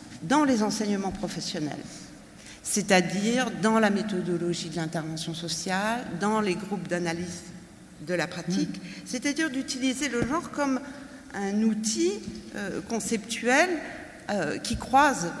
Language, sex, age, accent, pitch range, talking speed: French, female, 60-79, French, 190-260 Hz, 115 wpm